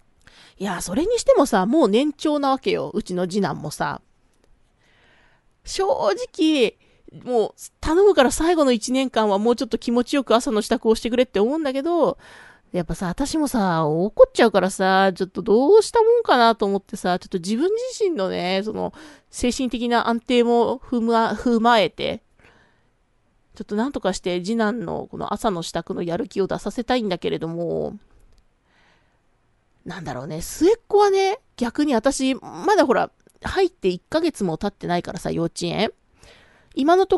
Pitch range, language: 200-300 Hz, Japanese